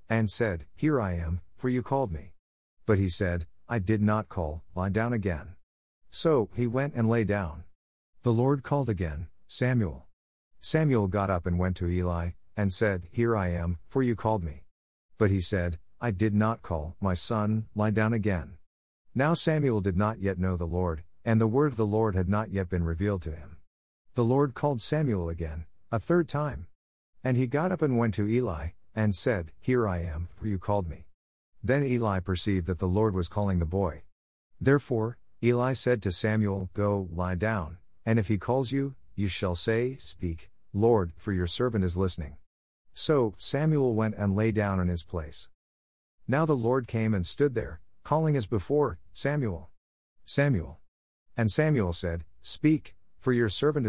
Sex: male